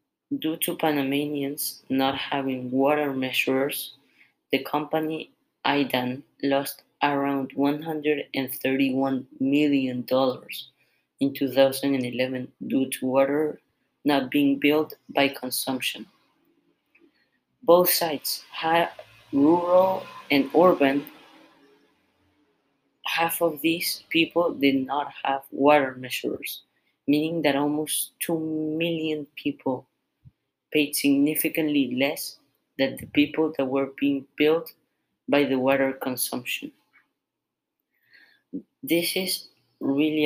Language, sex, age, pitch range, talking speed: English, female, 20-39, 135-155 Hz, 90 wpm